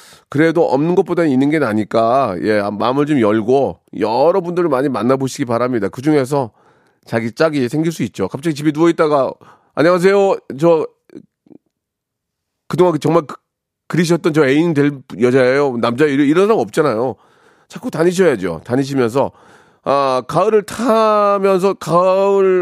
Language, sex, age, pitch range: Korean, male, 40-59, 130-180 Hz